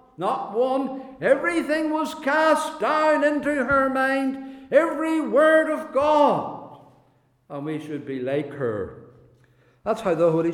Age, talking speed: 60-79, 130 wpm